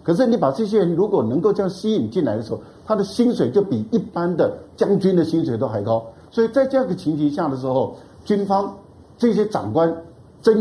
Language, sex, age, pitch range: Chinese, male, 50-69, 135-195 Hz